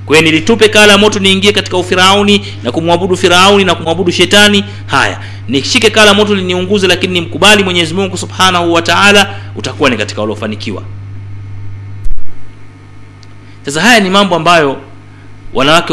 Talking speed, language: 135 wpm, Swahili